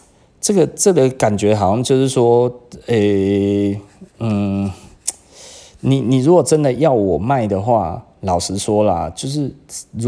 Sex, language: male, Chinese